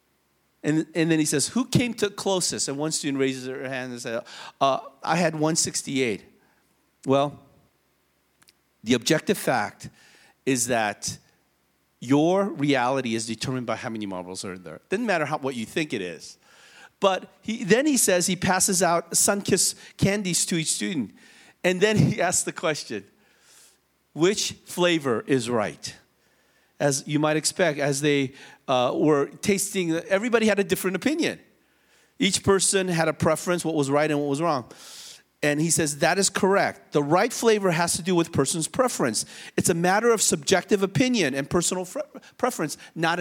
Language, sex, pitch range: English, male, 140-205 Hz